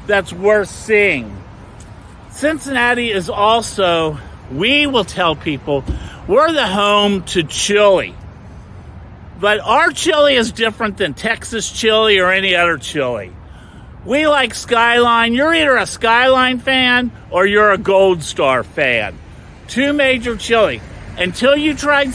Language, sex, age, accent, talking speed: English, male, 50-69, American, 125 wpm